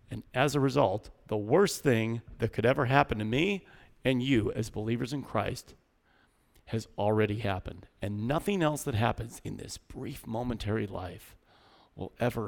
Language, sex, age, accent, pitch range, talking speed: English, male, 40-59, American, 105-140 Hz, 165 wpm